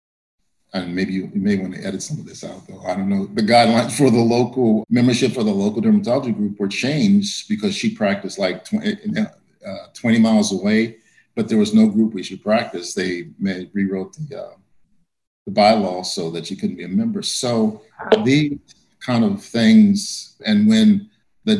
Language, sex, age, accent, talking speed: English, male, 50-69, American, 180 wpm